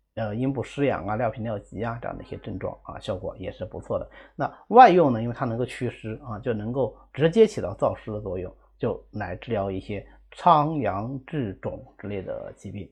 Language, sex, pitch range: Chinese, male, 115-170 Hz